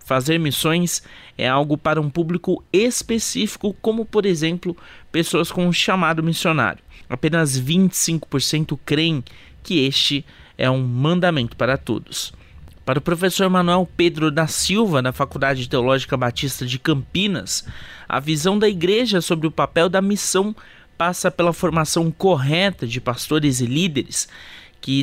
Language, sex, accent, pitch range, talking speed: Portuguese, male, Brazilian, 130-170 Hz, 135 wpm